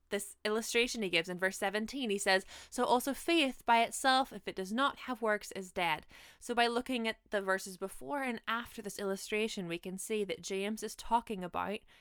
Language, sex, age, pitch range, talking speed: English, female, 20-39, 185-230 Hz, 205 wpm